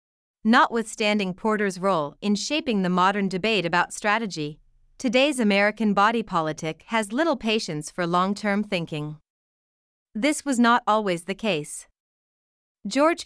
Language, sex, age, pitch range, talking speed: Vietnamese, female, 30-49, 175-225 Hz, 120 wpm